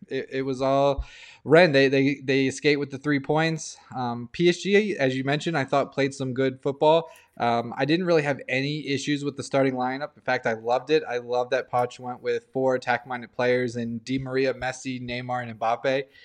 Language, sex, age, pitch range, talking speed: English, male, 20-39, 125-155 Hz, 205 wpm